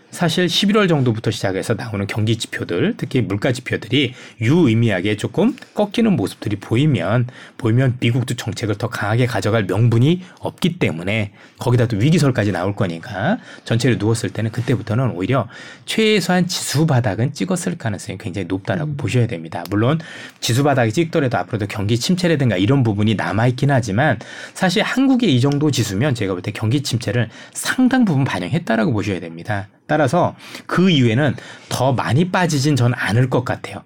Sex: male